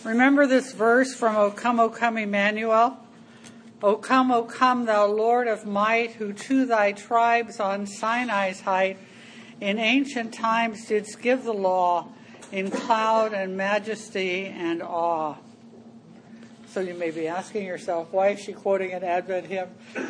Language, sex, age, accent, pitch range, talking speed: English, female, 60-79, American, 200-235 Hz, 150 wpm